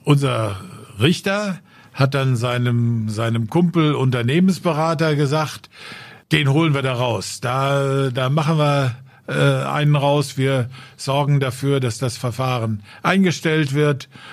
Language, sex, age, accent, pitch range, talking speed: German, male, 50-69, German, 130-155 Hz, 115 wpm